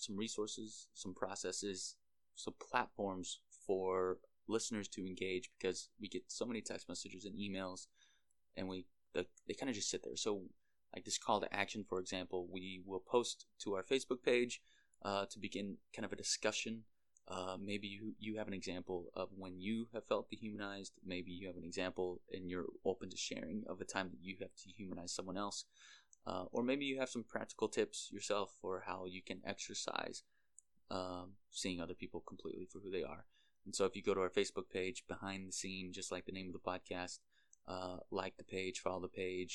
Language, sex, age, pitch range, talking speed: English, male, 20-39, 90-100 Hz, 200 wpm